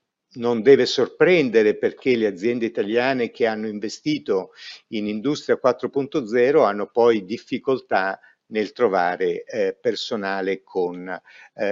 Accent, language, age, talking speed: native, Italian, 50-69, 115 wpm